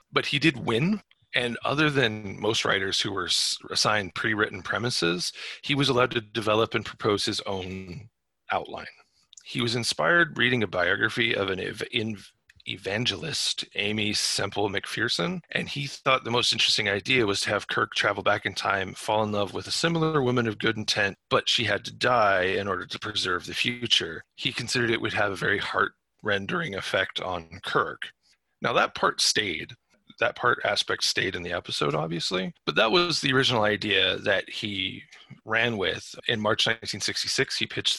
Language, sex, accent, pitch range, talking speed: English, male, American, 100-130 Hz, 175 wpm